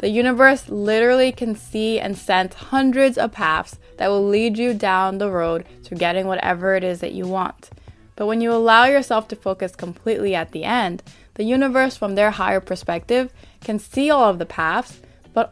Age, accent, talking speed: 20-39, American, 190 wpm